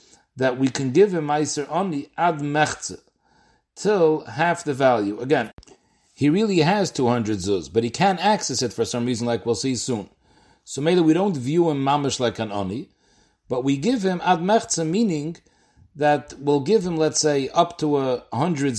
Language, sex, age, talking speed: English, male, 40-59, 180 wpm